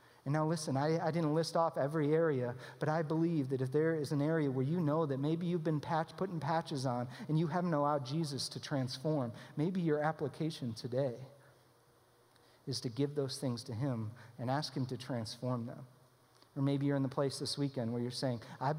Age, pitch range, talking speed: 40-59, 130-155 Hz, 210 wpm